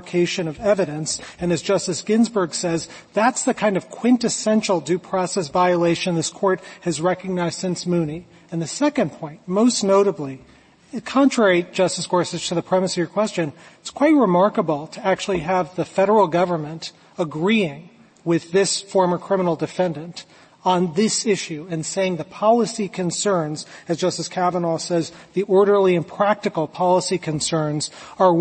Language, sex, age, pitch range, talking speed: English, male, 40-59, 170-200 Hz, 150 wpm